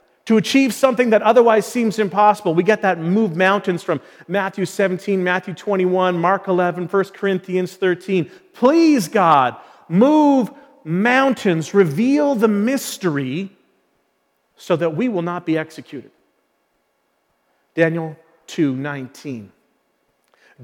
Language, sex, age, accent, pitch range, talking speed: English, male, 40-59, American, 170-230 Hz, 110 wpm